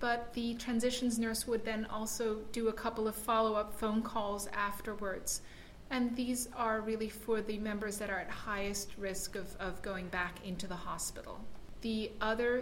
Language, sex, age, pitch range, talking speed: English, female, 30-49, 205-230 Hz, 170 wpm